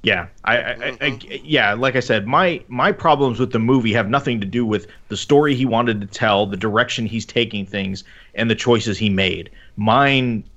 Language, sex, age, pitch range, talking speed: English, male, 30-49, 105-130 Hz, 210 wpm